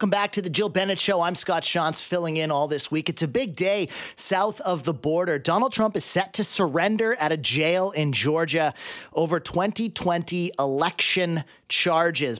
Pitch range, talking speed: 145-185 Hz, 185 wpm